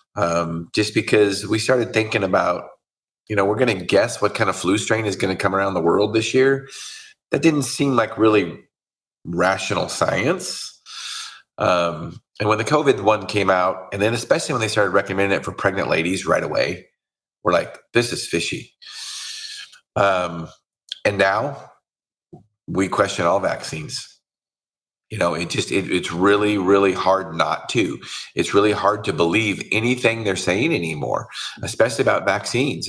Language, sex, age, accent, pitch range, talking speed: English, male, 30-49, American, 95-130 Hz, 160 wpm